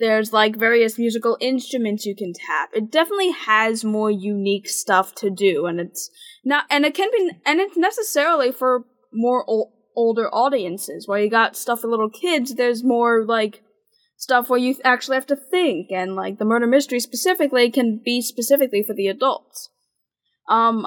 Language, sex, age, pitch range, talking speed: English, female, 10-29, 205-245 Hz, 180 wpm